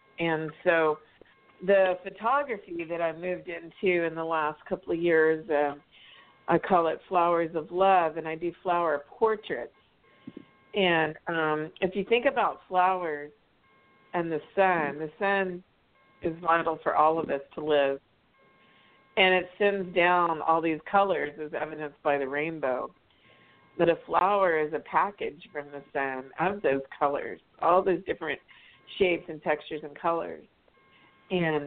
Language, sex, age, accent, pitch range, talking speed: English, female, 50-69, American, 150-180 Hz, 150 wpm